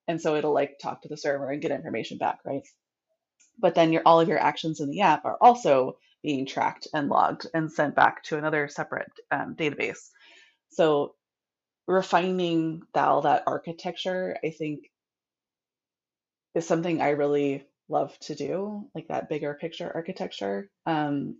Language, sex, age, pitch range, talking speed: English, female, 20-39, 150-180 Hz, 160 wpm